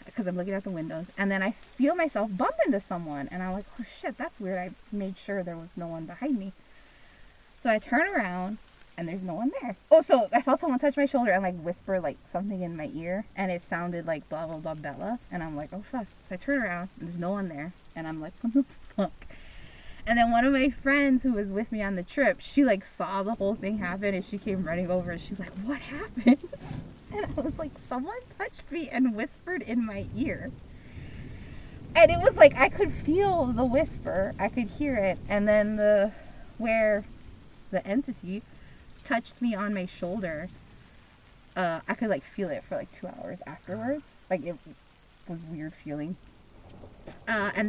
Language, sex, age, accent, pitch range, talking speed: English, female, 20-39, American, 180-255 Hz, 215 wpm